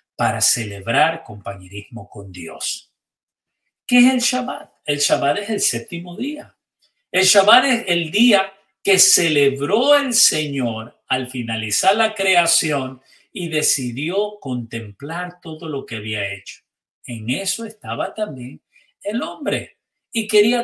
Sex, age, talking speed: male, 50-69, 130 wpm